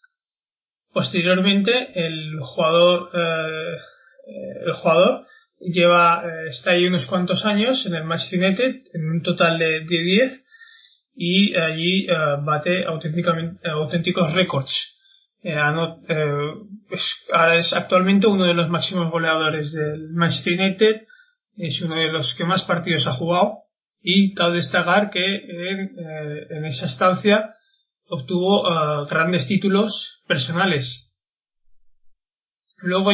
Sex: male